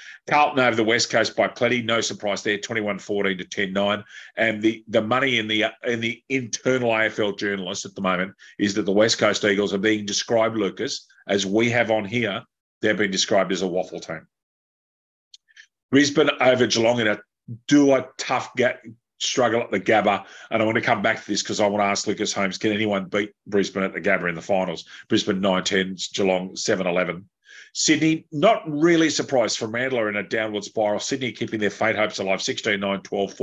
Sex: male